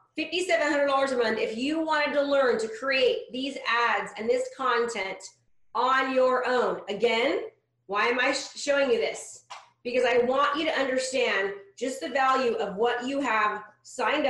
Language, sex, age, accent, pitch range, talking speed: English, female, 30-49, American, 235-305 Hz, 165 wpm